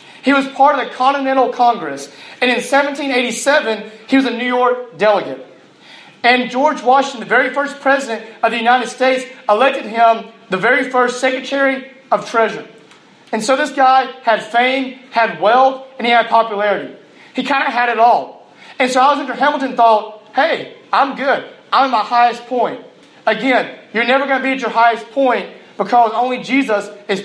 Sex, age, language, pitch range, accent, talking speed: male, 30-49, English, 225-265 Hz, American, 175 wpm